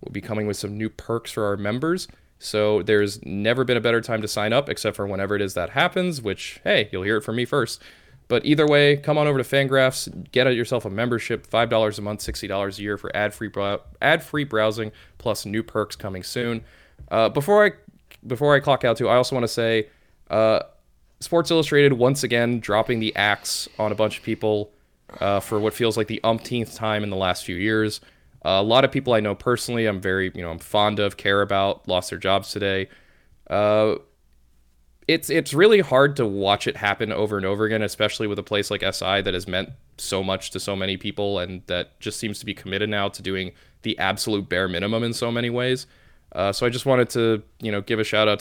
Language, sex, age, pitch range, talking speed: English, male, 20-39, 100-115 Hz, 220 wpm